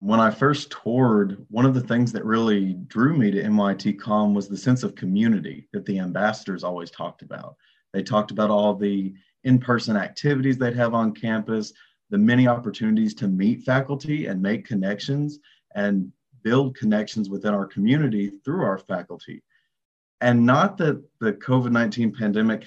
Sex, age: male, 30-49